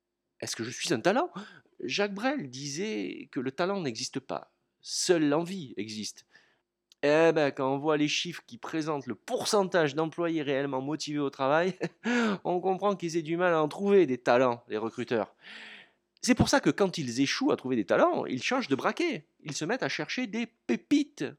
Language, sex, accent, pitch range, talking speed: French, male, French, 140-230 Hz, 190 wpm